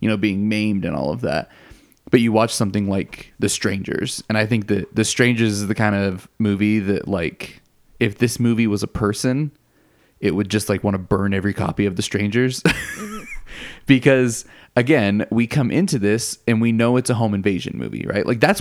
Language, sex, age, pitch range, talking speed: English, male, 20-39, 105-120 Hz, 205 wpm